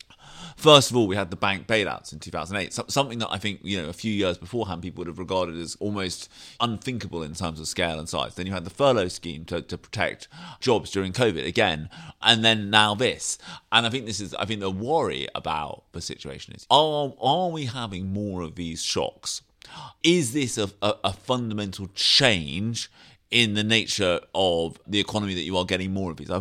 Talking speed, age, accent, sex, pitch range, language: 215 wpm, 30-49, British, male, 90-110 Hz, English